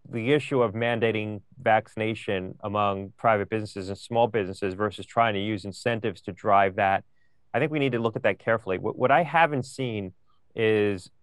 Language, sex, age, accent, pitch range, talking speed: English, male, 30-49, American, 100-120 Hz, 180 wpm